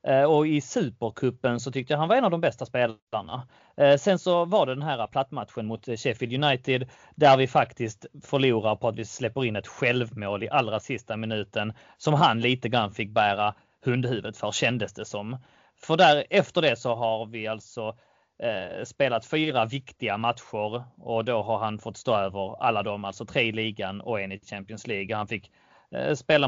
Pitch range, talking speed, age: 110-150 Hz, 185 wpm, 30-49